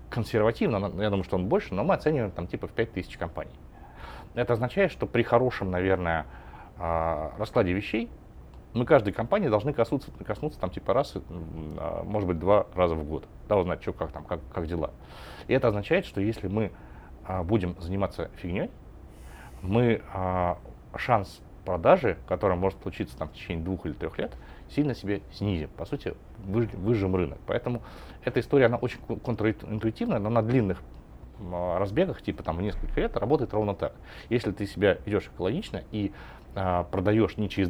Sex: male